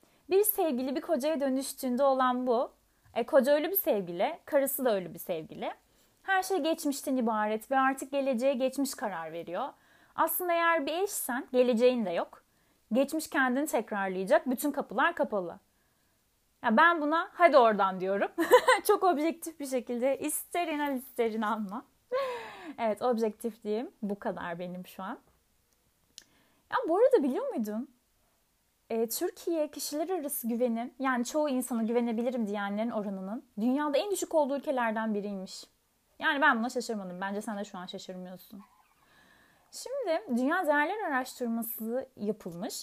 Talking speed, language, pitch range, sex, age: 135 wpm, Turkish, 225-310 Hz, female, 30-49